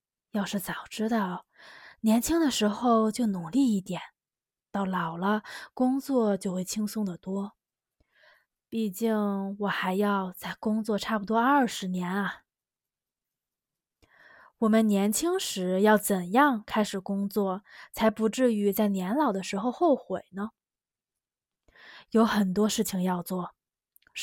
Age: 20-39